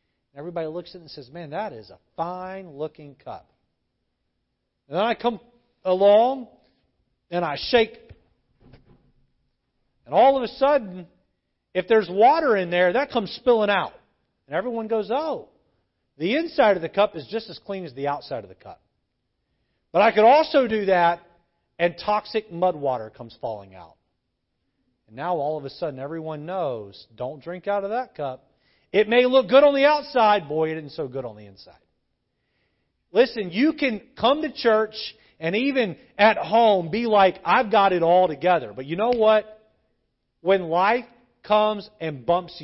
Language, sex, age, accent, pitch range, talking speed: English, male, 40-59, American, 140-220 Hz, 170 wpm